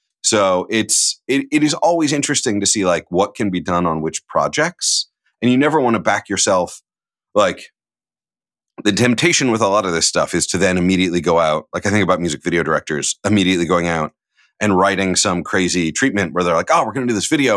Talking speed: 220 wpm